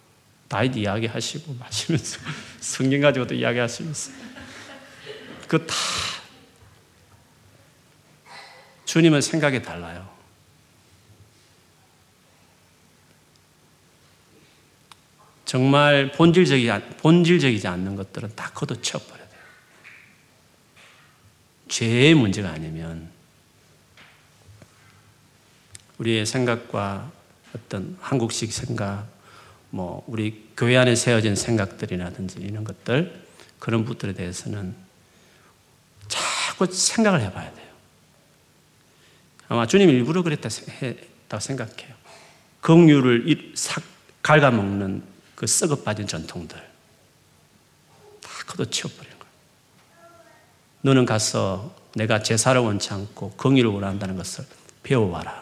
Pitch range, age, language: 100-140 Hz, 40-59, Korean